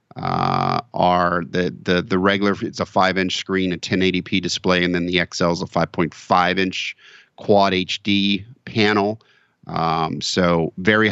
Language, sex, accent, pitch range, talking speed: English, male, American, 85-100 Hz, 150 wpm